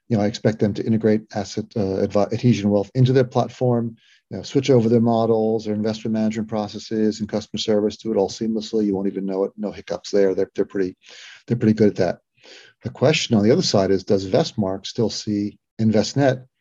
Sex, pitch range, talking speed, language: male, 100-120 Hz, 215 wpm, English